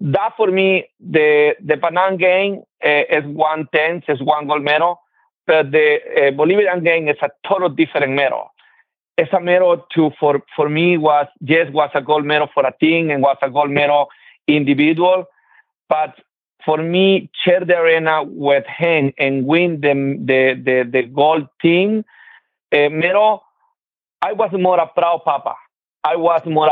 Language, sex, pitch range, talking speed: English, male, 145-180 Hz, 165 wpm